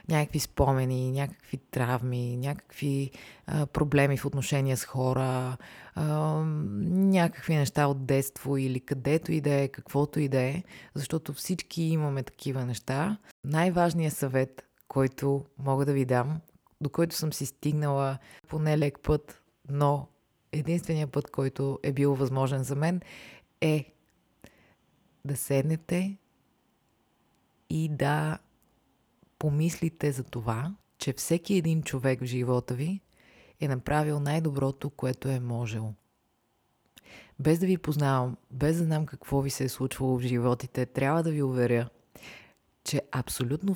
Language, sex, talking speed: Bulgarian, female, 130 wpm